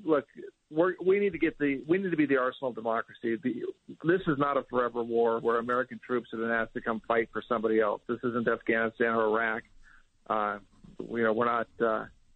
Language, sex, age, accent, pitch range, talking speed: English, male, 50-69, American, 115-130 Hz, 195 wpm